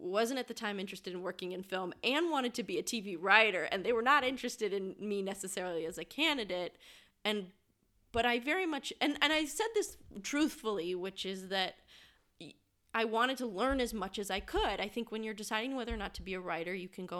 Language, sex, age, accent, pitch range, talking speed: English, female, 20-39, American, 180-225 Hz, 225 wpm